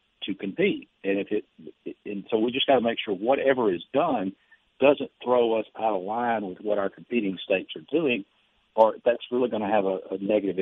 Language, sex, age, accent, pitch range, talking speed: English, male, 60-79, American, 95-110 Hz, 215 wpm